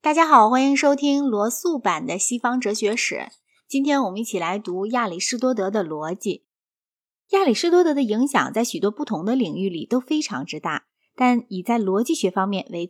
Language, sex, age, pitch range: Chinese, female, 20-39, 195-280 Hz